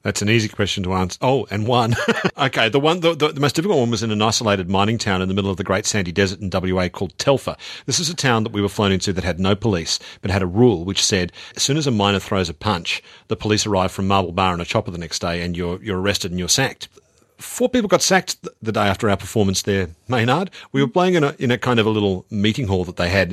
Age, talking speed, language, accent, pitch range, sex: 40-59, 280 wpm, English, Australian, 95-125 Hz, male